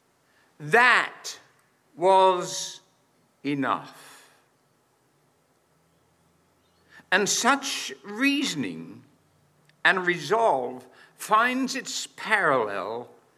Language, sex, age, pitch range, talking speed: English, male, 60-79, 145-210 Hz, 50 wpm